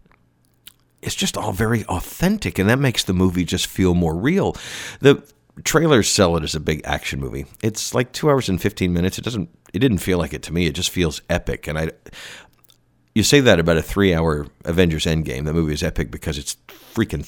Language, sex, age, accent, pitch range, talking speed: English, male, 50-69, American, 75-100 Hz, 210 wpm